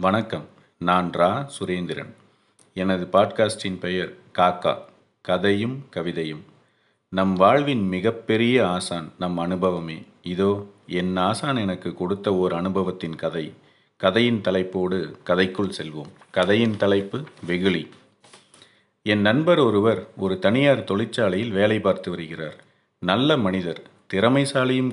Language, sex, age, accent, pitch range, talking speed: Tamil, male, 40-59, native, 90-115 Hz, 105 wpm